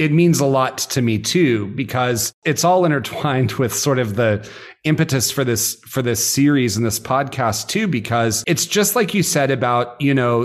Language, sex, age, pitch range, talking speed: English, male, 40-59, 115-145 Hz, 195 wpm